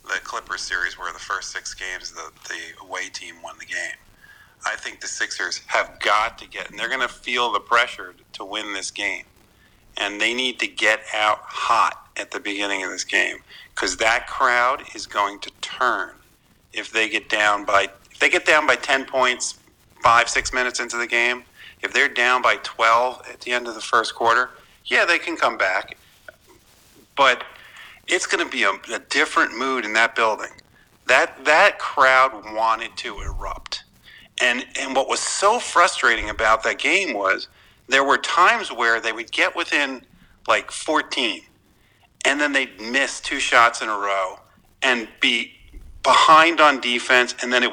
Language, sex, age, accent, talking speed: English, male, 40-59, American, 180 wpm